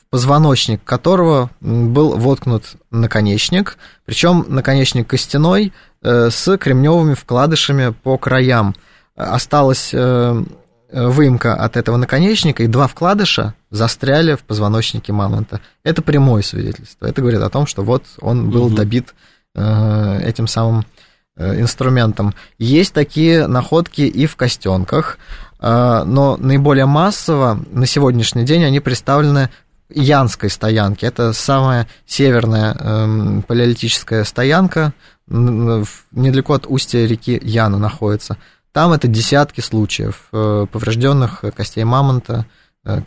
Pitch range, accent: 115-140 Hz, native